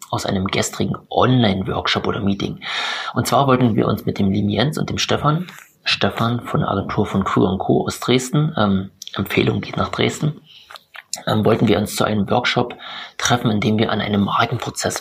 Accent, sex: German, male